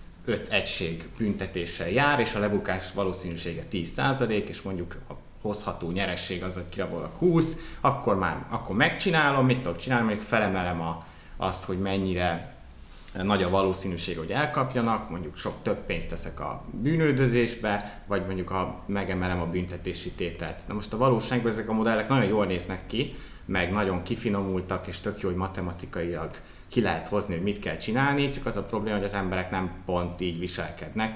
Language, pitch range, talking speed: Hungarian, 90-115 Hz, 170 wpm